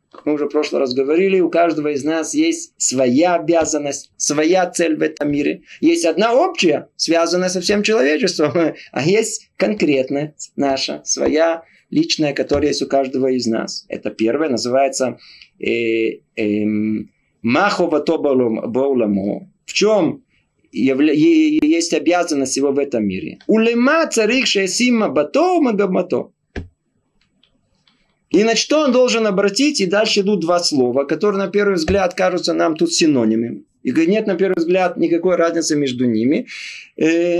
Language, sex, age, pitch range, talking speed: Russian, male, 20-39, 140-210 Hz, 140 wpm